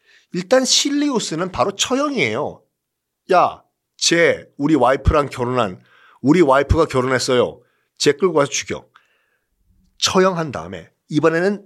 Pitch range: 150-225 Hz